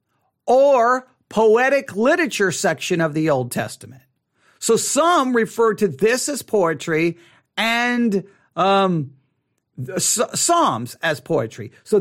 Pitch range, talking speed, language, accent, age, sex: 150-245 Hz, 105 wpm, English, American, 50-69, male